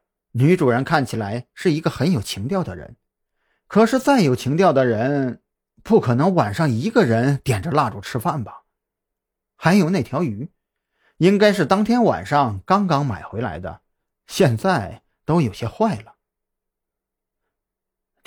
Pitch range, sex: 115-185 Hz, male